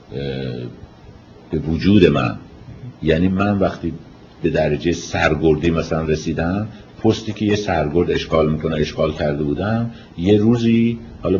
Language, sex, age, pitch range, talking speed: Persian, male, 50-69, 80-120 Hz, 120 wpm